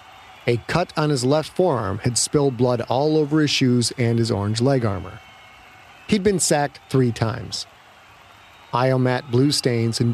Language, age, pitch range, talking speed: English, 40-59, 115-155 Hz, 160 wpm